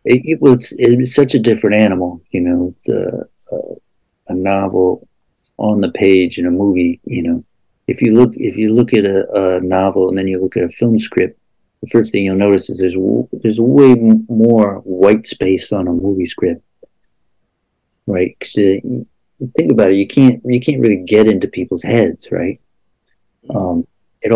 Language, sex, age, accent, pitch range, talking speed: English, male, 60-79, American, 95-115 Hz, 180 wpm